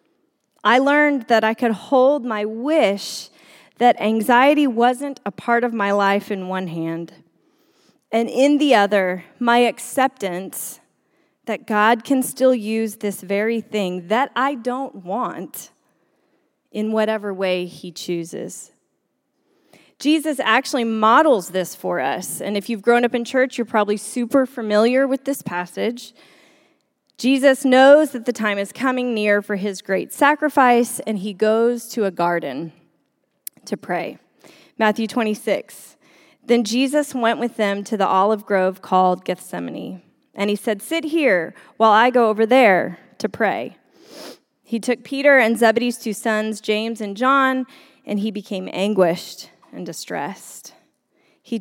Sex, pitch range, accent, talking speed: female, 200-260 Hz, American, 145 wpm